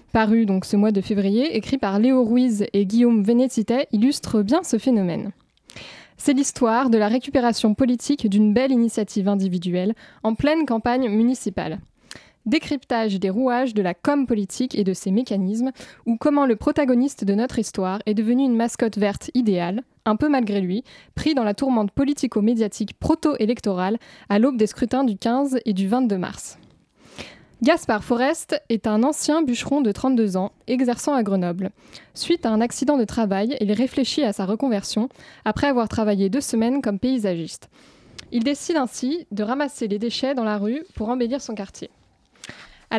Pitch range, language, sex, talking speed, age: 210-265 Hz, French, female, 170 wpm, 20-39